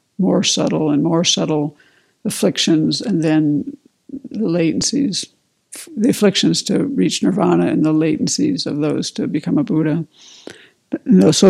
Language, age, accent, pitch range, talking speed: English, 60-79, American, 160-205 Hz, 130 wpm